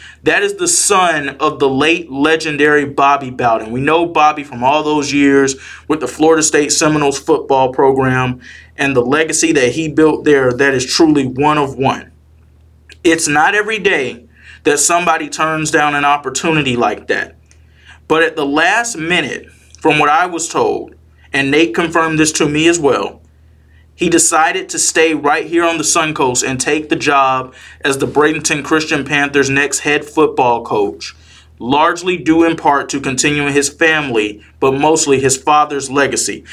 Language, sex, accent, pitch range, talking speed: English, male, American, 135-160 Hz, 170 wpm